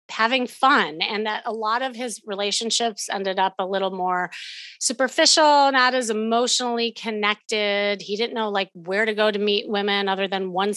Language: English